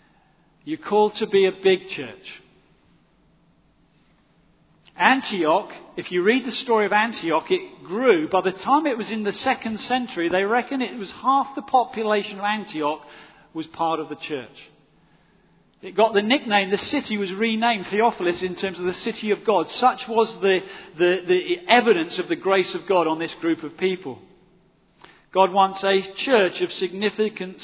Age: 40-59